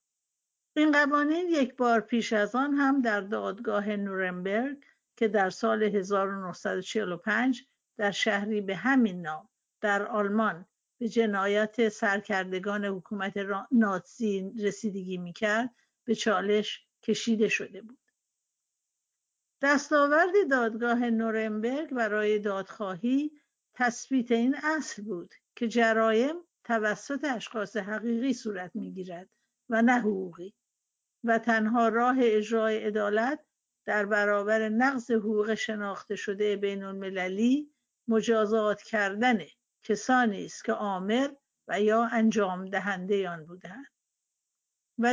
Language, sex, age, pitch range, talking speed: Persian, female, 50-69, 205-245 Hz, 105 wpm